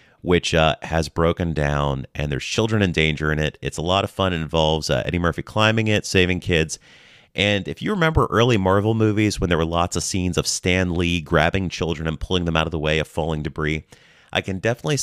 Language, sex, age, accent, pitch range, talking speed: English, male, 30-49, American, 80-105 Hz, 230 wpm